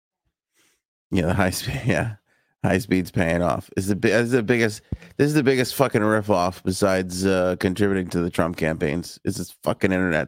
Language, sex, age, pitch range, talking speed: English, male, 30-49, 95-125 Hz, 200 wpm